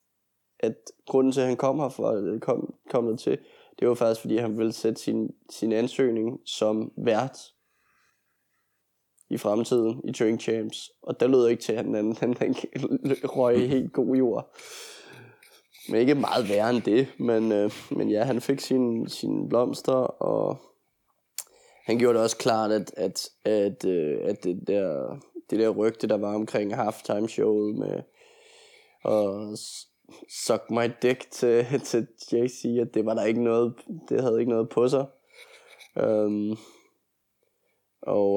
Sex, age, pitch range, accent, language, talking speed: male, 20-39, 110-130 Hz, native, Danish, 155 wpm